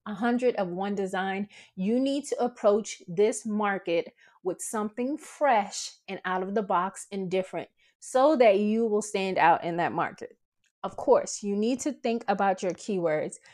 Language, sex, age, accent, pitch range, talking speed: English, female, 20-39, American, 190-235 Hz, 170 wpm